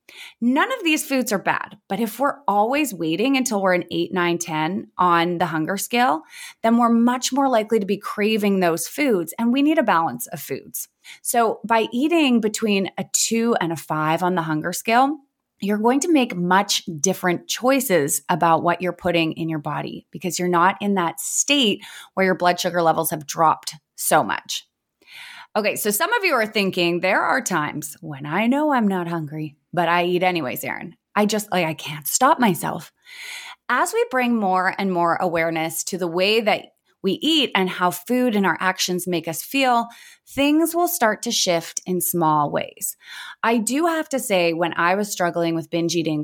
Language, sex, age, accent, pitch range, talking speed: English, female, 20-39, American, 170-230 Hz, 195 wpm